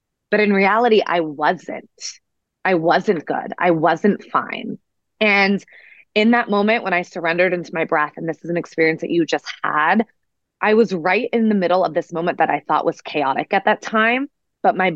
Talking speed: 195 wpm